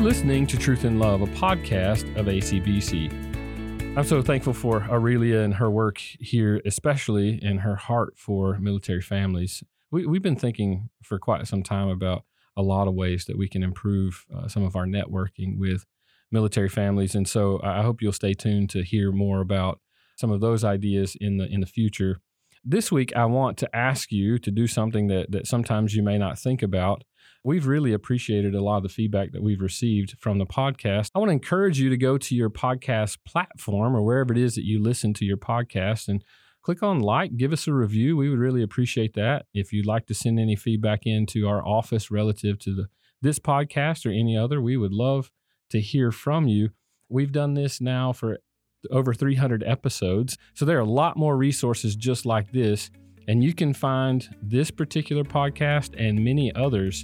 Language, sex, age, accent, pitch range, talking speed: English, male, 40-59, American, 100-130 Hz, 195 wpm